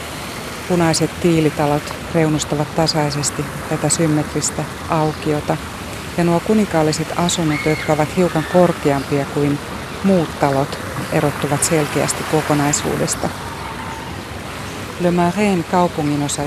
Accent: native